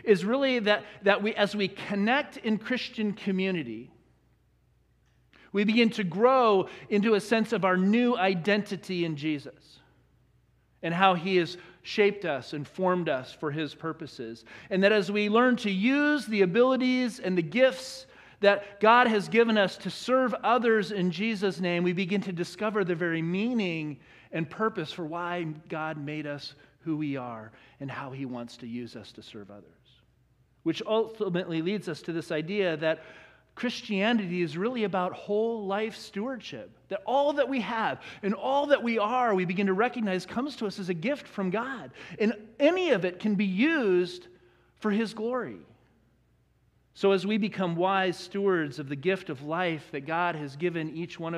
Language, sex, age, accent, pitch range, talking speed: English, male, 40-59, American, 165-220 Hz, 175 wpm